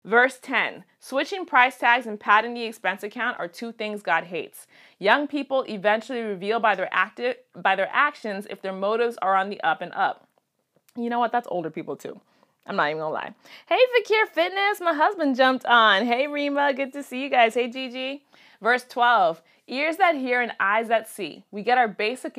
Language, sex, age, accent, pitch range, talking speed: English, female, 30-49, American, 200-260 Hz, 200 wpm